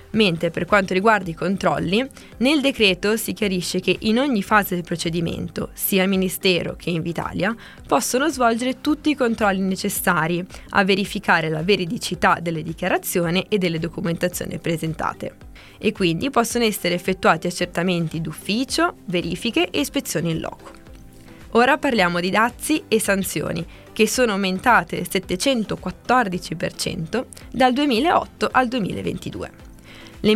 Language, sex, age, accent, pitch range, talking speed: Italian, female, 20-39, native, 180-230 Hz, 130 wpm